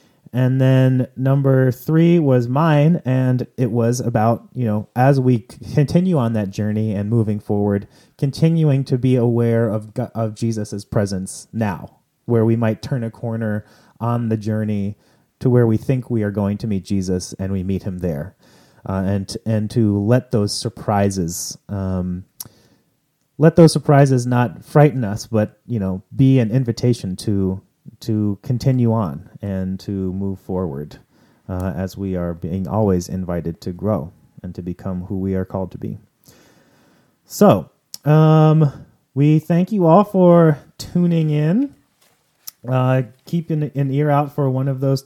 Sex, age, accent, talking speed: male, 30-49, American, 160 wpm